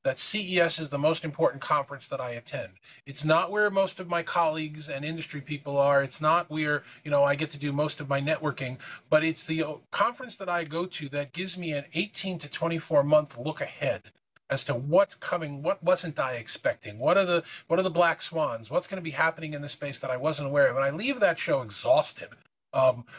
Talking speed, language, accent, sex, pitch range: 230 wpm, English, American, male, 140-165 Hz